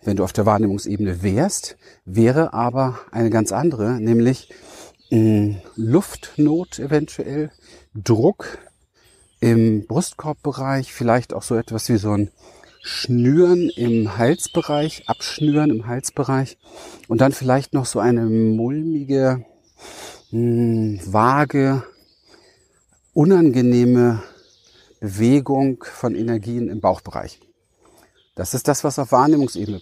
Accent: German